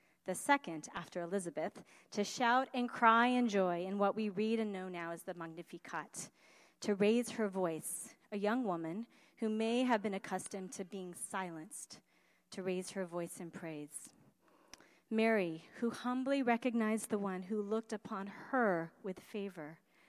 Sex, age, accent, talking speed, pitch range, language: female, 40-59, American, 160 wpm, 180-220 Hz, English